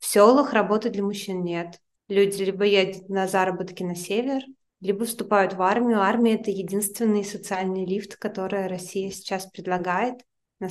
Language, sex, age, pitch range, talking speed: Russian, female, 20-39, 185-215 Hz, 150 wpm